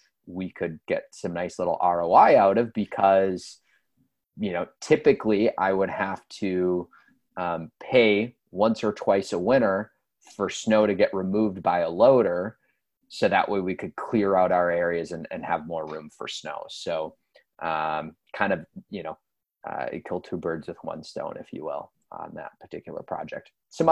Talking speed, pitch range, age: 175 wpm, 90-105 Hz, 20-39